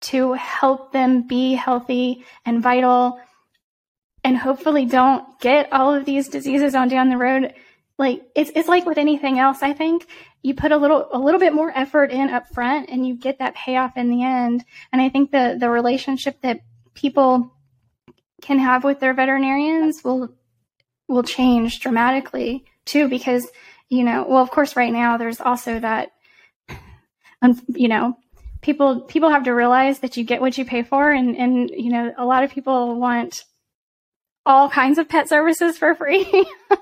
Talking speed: 175 wpm